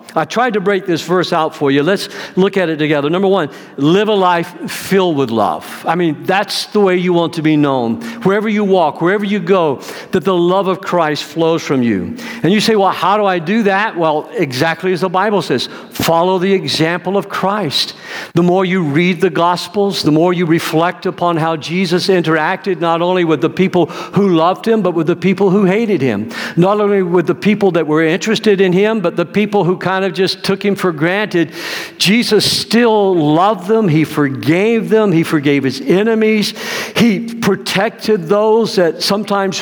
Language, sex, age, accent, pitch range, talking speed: English, male, 60-79, American, 165-205 Hz, 200 wpm